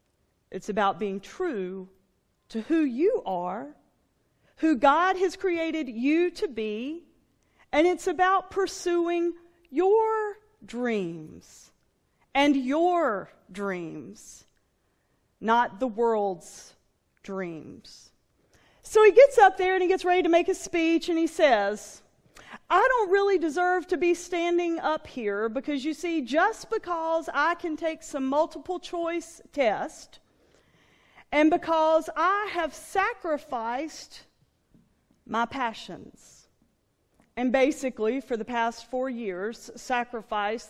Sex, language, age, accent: female, English, 40-59, American